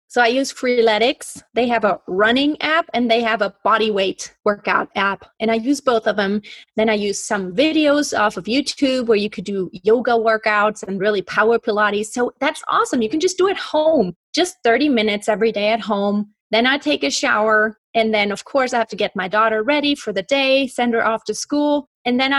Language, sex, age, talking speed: English, female, 30-49, 225 wpm